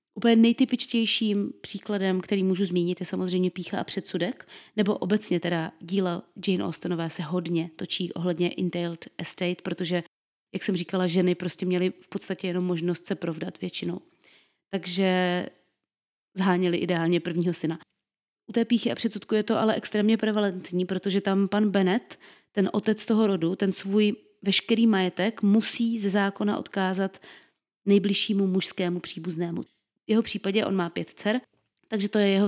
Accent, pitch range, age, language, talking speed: native, 180-210 Hz, 30-49, Czech, 150 wpm